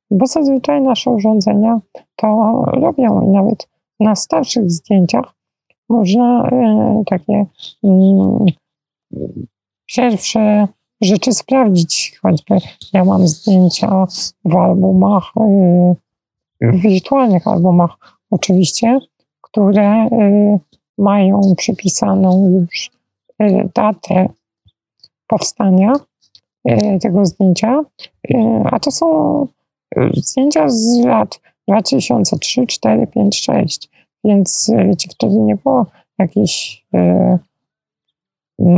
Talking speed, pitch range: 80 wpm, 185-230 Hz